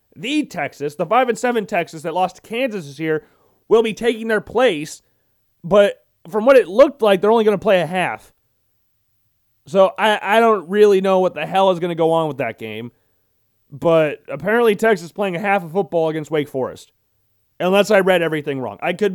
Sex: male